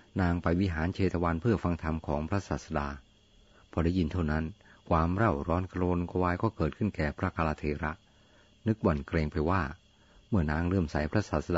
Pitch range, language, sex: 80-100 Hz, Thai, male